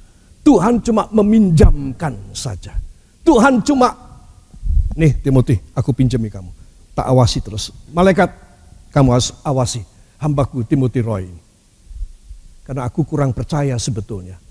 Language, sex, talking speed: Indonesian, male, 110 wpm